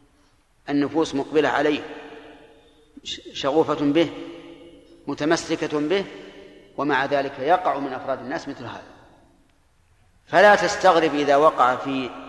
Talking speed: 100 wpm